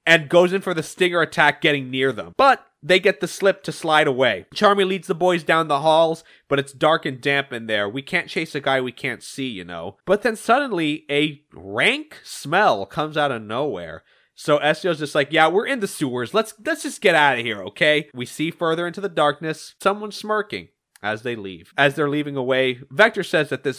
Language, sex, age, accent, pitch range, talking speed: English, male, 20-39, American, 130-185 Hz, 220 wpm